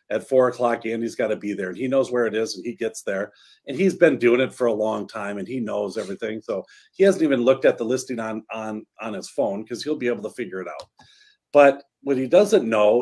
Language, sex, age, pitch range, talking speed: English, male, 40-59, 115-145 Hz, 265 wpm